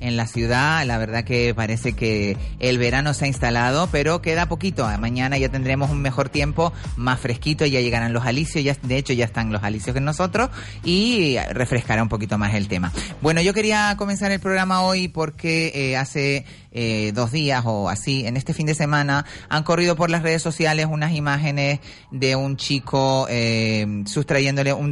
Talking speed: 185 wpm